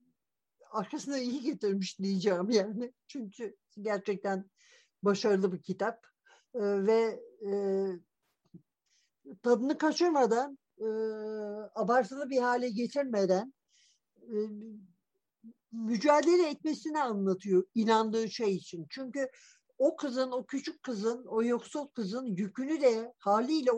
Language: Turkish